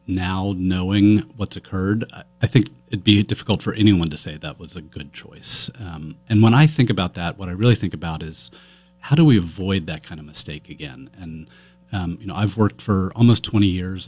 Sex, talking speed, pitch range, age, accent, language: male, 215 wpm, 85-110 Hz, 40-59, American, English